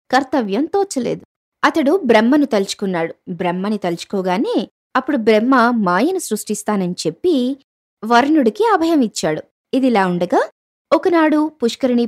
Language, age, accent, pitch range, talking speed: Telugu, 20-39, native, 195-275 Hz, 90 wpm